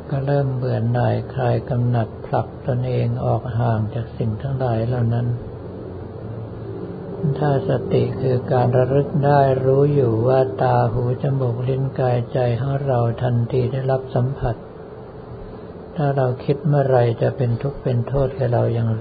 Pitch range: 115-135 Hz